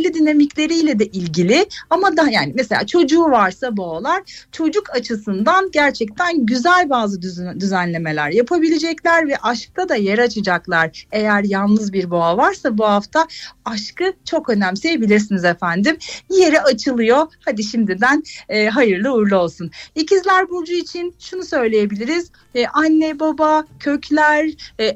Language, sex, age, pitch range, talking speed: Turkish, female, 40-59, 215-315 Hz, 125 wpm